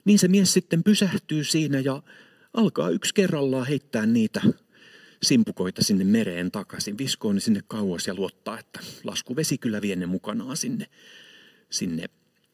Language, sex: Finnish, male